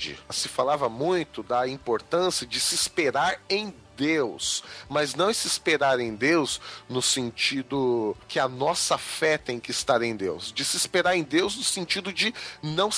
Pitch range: 120-165 Hz